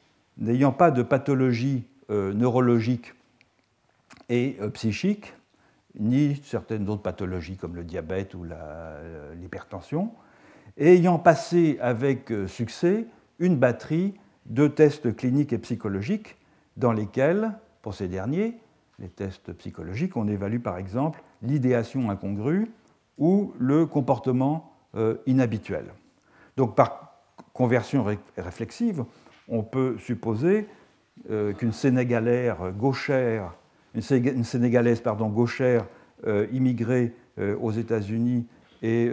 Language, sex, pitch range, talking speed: French, male, 105-145 Hz, 105 wpm